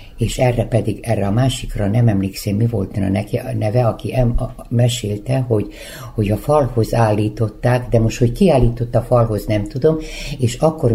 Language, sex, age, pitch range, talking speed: Hungarian, female, 60-79, 100-130 Hz, 175 wpm